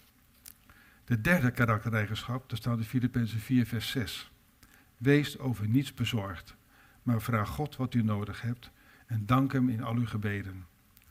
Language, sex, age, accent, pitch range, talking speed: Dutch, male, 50-69, Dutch, 110-130 Hz, 155 wpm